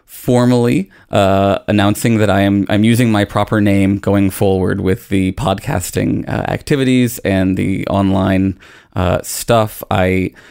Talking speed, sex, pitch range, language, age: 135 wpm, male, 95-110 Hz, English, 20-39